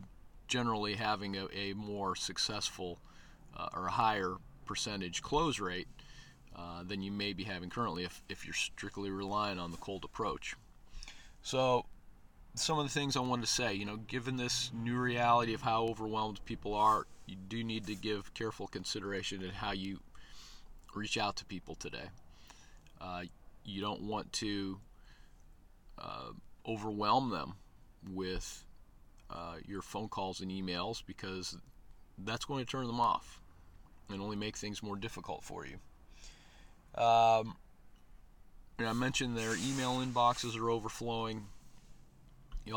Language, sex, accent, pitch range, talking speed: English, male, American, 90-110 Hz, 145 wpm